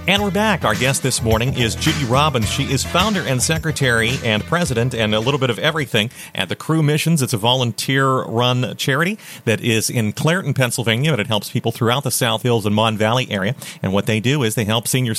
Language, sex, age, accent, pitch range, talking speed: English, male, 40-59, American, 115-160 Hz, 225 wpm